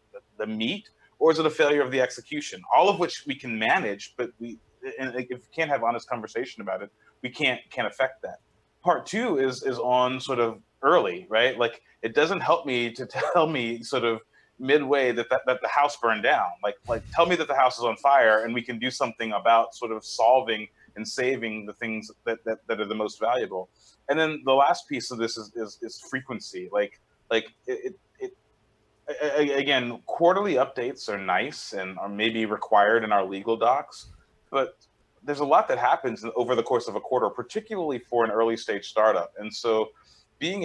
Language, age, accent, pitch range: English, 30-49, American, 115-145 Hz